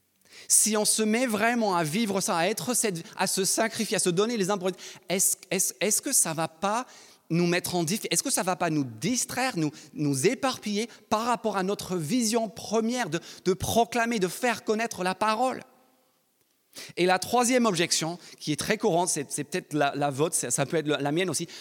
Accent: French